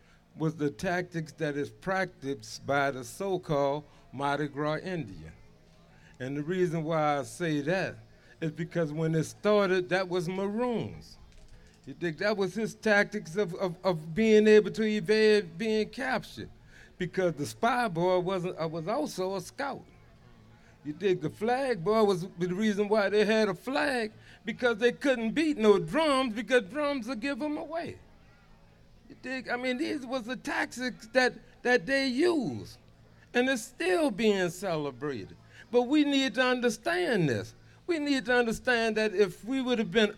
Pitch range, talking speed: 175-235 Hz, 165 wpm